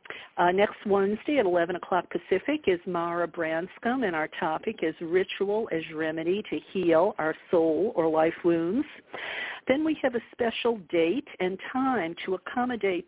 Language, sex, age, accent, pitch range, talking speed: English, female, 50-69, American, 170-205 Hz, 155 wpm